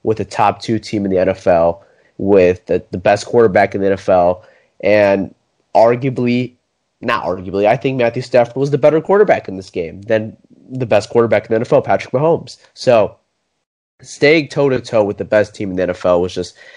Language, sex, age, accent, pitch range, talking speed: English, male, 20-39, American, 105-135 Hz, 185 wpm